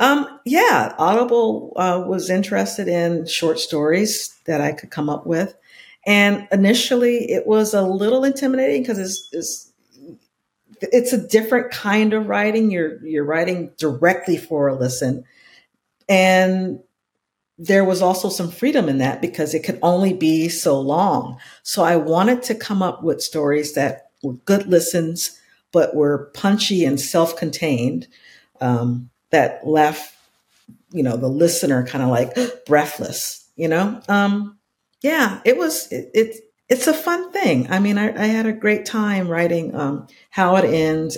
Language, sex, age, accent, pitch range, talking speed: English, female, 50-69, American, 150-205 Hz, 155 wpm